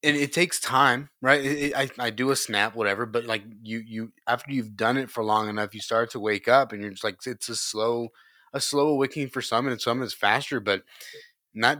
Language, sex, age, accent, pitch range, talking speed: English, male, 20-39, American, 105-135 Hz, 230 wpm